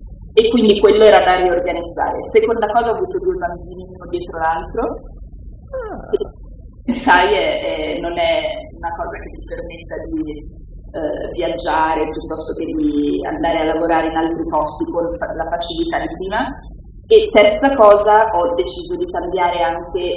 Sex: female